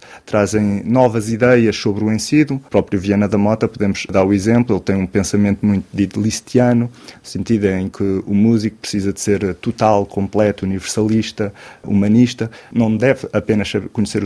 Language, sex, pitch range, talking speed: Portuguese, male, 100-120 Hz, 160 wpm